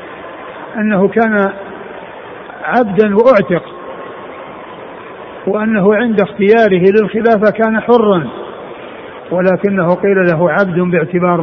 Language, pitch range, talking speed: Arabic, 180-215 Hz, 80 wpm